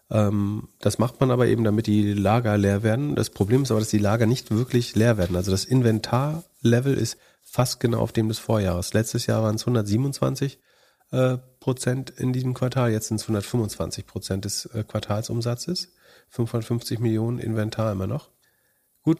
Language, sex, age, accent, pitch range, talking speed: German, male, 40-59, German, 105-120 Hz, 170 wpm